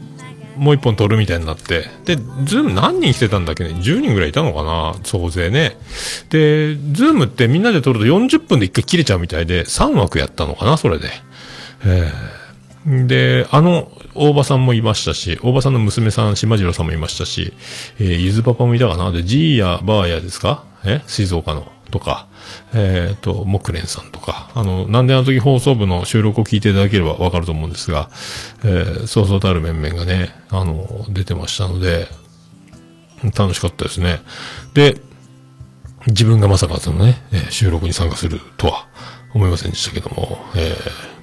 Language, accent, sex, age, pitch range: Japanese, native, male, 40-59, 90-120 Hz